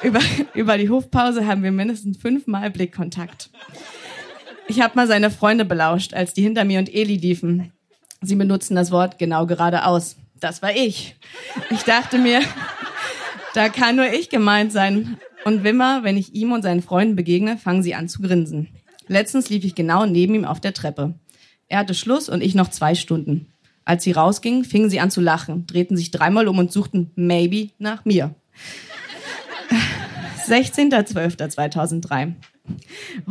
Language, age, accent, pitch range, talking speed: German, 30-49, German, 175-220 Hz, 160 wpm